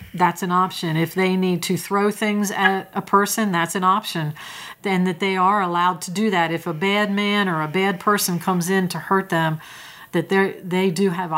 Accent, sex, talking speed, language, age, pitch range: American, female, 210 wpm, English, 40-59, 165-195 Hz